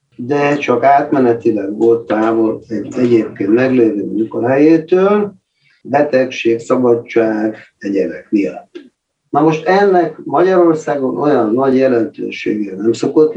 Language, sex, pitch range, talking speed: Hungarian, male, 115-155 Hz, 100 wpm